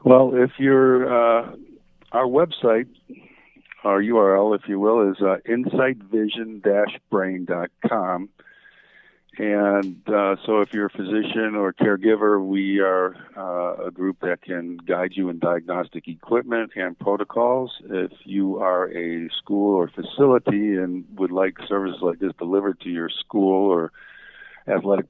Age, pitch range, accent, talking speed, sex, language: 50-69, 90-105 Hz, American, 135 wpm, male, English